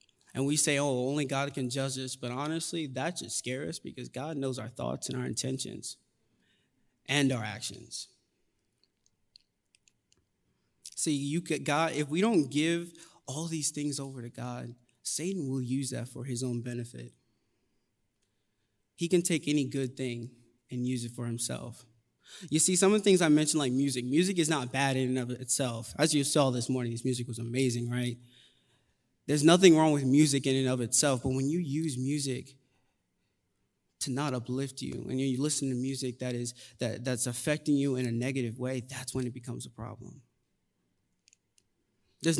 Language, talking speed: English, 180 wpm